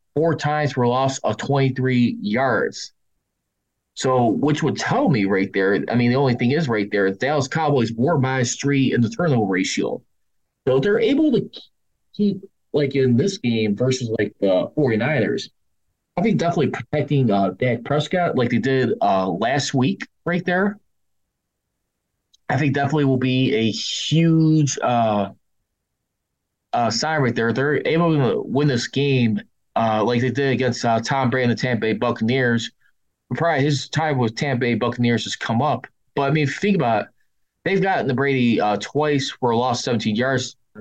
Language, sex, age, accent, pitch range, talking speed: English, male, 20-39, American, 110-140 Hz, 175 wpm